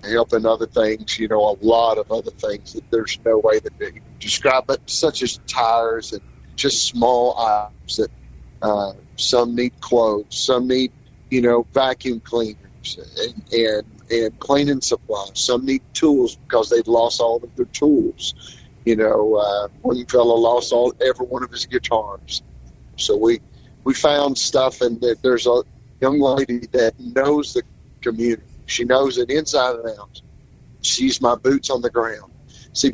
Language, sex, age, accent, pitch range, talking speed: English, male, 50-69, American, 115-155 Hz, 160 wpm